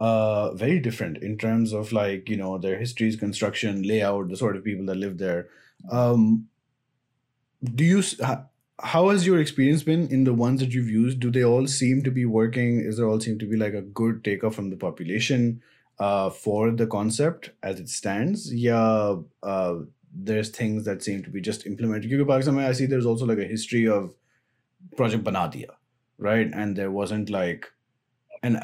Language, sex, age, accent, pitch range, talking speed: English, male, 30-49, Indian, 100-130 Hz, 180 wpm